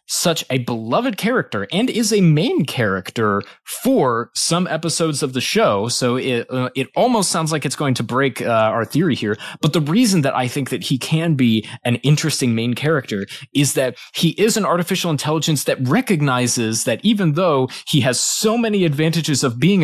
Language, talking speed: English, 190 wpm